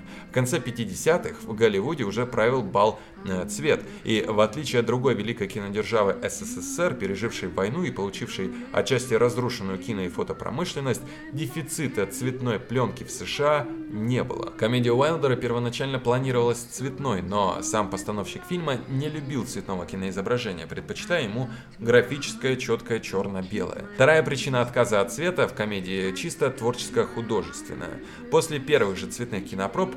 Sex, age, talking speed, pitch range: male, 20-39, 130 wpm, 115-150 Hz